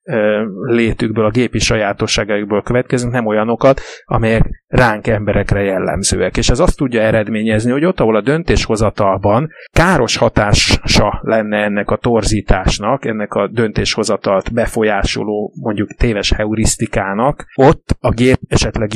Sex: male